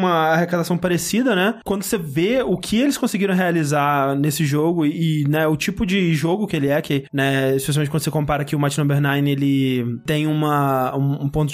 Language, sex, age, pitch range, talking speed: Portuguese, male, 20-39, 145-195 Hz, 200 wpm